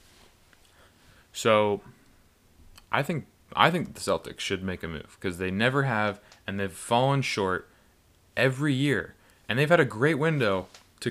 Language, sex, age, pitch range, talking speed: English, male, 20-39, 95-125 Hz, 150 wpm